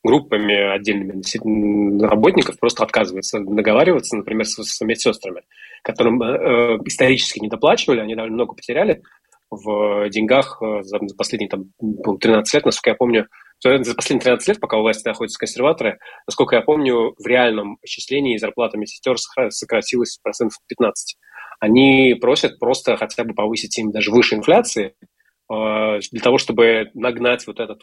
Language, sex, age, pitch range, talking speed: Russian, male, 20-39, 105-125 Hz, 145 wpm